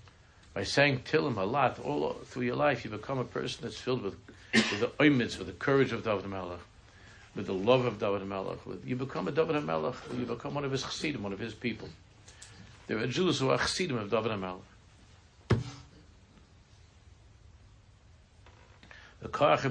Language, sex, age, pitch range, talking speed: English, male, 60-79, 95-125 Hz, 175 wpm